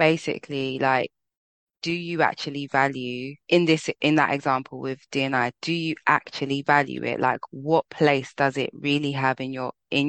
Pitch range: 130-145 Hz